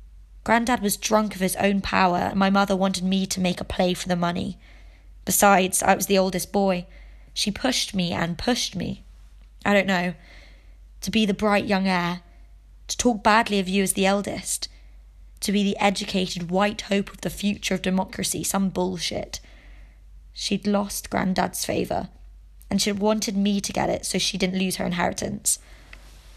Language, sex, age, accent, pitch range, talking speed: English, female, 20-39, British, 180-205 Hz, 175 wpm